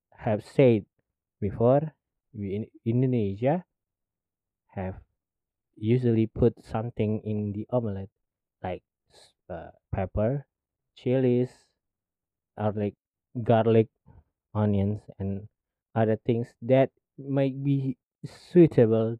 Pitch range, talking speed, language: 95-125 Hz, 85 wpm, Indonesian